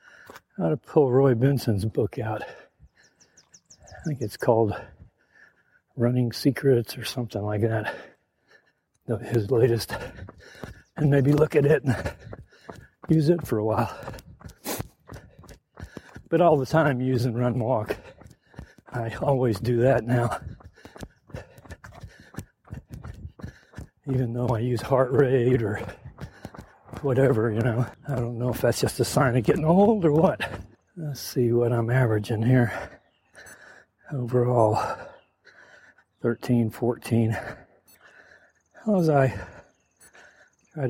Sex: male